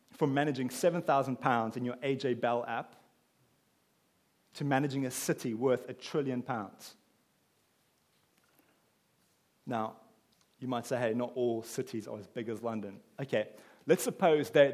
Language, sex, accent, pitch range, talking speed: English, male, British, 120-160 Hz, 140 wpm